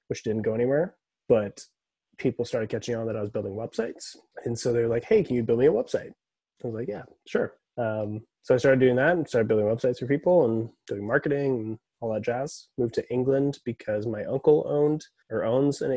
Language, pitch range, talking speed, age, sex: English, 105-130 Hz, 220 wpm, 20-39, male